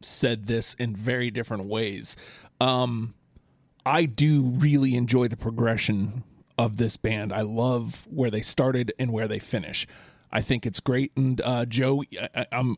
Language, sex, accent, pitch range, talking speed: English, male, American, 120-140 Hz, 160 wpm